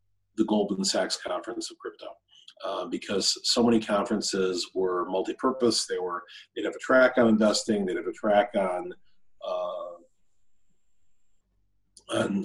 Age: 40-59